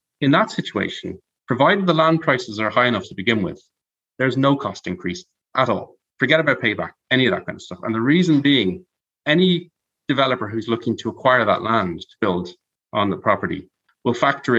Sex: male